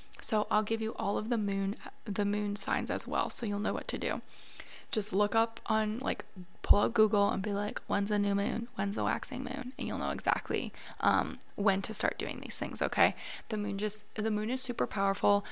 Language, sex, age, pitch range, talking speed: English, female, 20-39, 200-220 Hz, 225 wpm